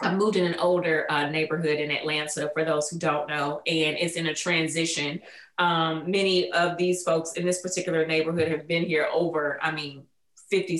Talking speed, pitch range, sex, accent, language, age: 195 wpm, 160-190 Hz, female, American, English, 30-49